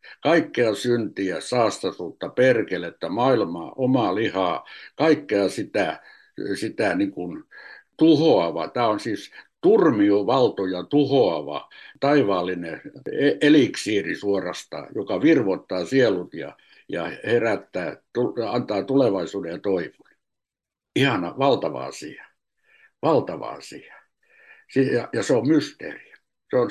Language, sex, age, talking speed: Finnish, male, 60-79, 95 wpm